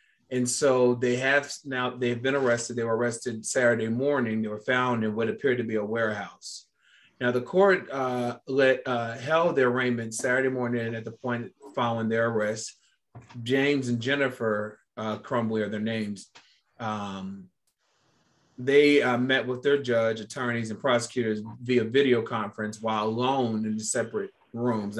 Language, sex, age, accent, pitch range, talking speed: English, male, 30-49, American, 110-130 Hz, 160 wpm